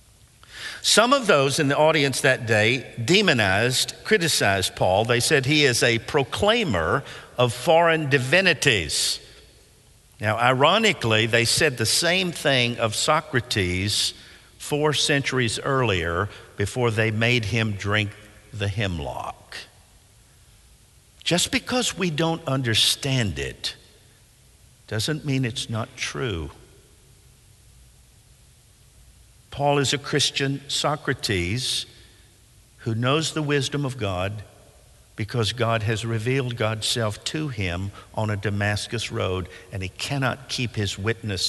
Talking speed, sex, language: 115 wpm, male, English